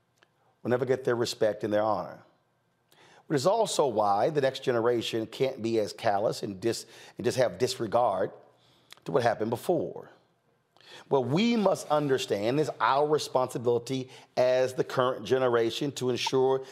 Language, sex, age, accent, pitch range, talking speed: English, male, 40-59, American, 105-140 Hz, 155 wpm